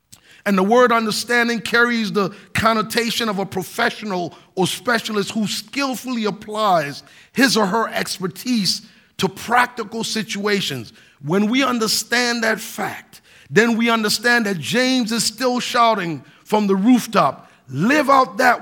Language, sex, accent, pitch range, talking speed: English, male, American, 190-235 Hz, 130 wpm